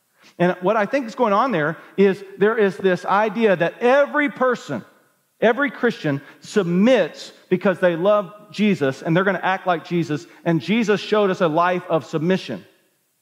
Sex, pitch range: male, 170-225 Hz